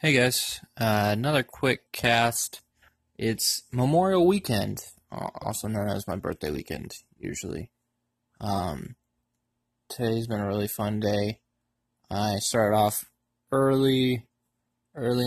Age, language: 20-39, English